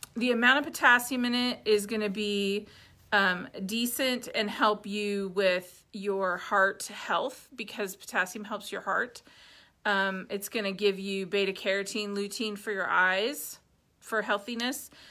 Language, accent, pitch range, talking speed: English, American, 205-245 Hz, 145 wpm